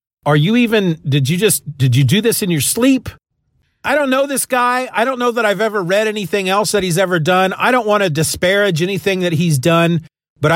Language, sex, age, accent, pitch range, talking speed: English, male, 40-59, American, 155-220 Hz, 235 wpm